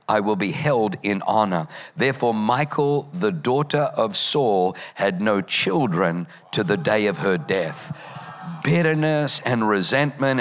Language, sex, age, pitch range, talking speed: English, male, 50-69, 110-150 Hz, 140 wpm